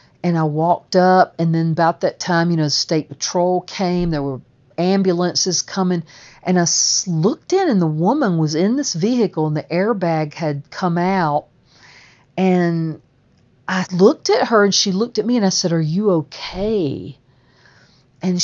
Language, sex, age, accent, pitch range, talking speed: English, female, 50-69, American, 155-190 Hz, 170 wpm